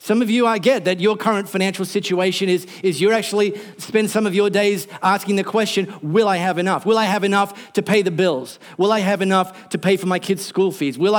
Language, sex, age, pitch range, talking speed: English, male, 40-59, 180-220 Hz, 245 wpm